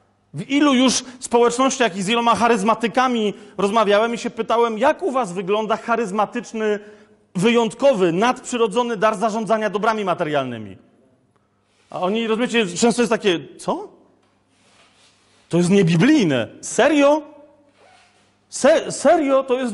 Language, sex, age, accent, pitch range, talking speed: Polish, male, 40-59, native, 190-240 Hz, 115 wpm